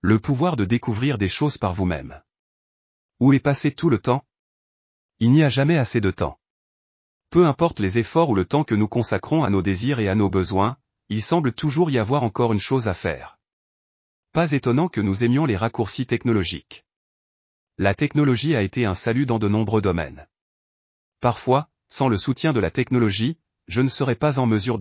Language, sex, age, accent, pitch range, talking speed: French, male, 30-49, French, 100-135 Hz, 190 wpm